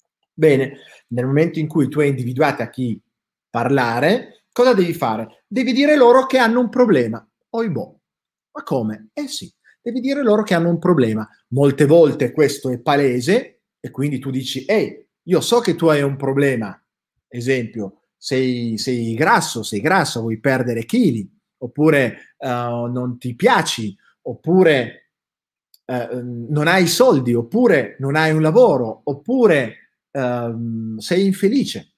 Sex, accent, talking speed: male, native, 145 wpm